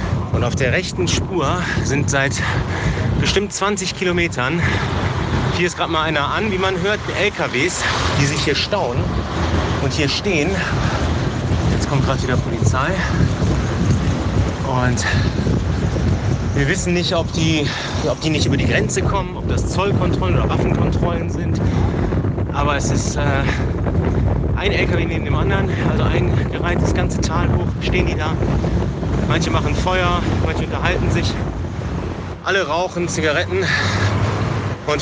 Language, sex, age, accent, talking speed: German, male, 30-49, German, 135 wpm